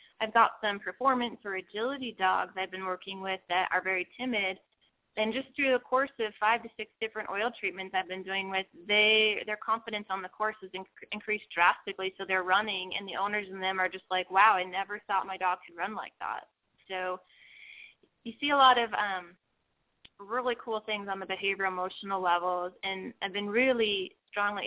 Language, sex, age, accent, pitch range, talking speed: English, female, 20-39, American, 190-225 Hz, 195 wpm